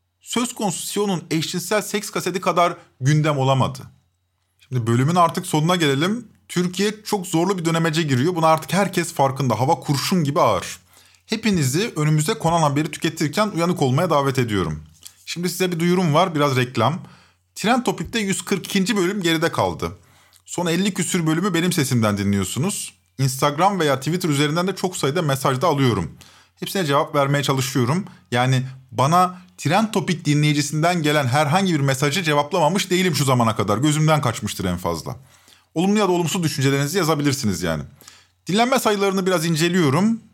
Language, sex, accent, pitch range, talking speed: Turkish, male, native, 135-180 Hz, 145 wpm